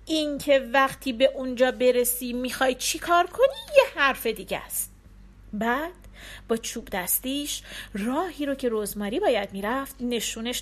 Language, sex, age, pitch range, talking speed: Persian, female, 40-59, 225-315 Hz, 130 wpm